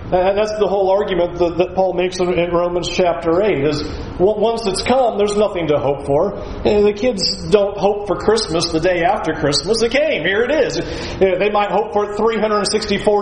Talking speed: 195 wpm